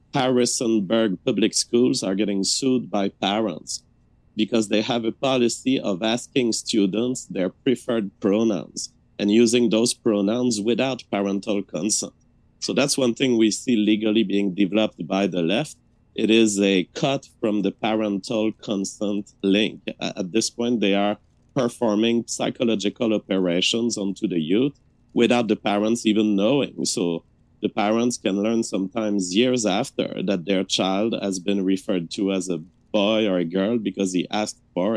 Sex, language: male, English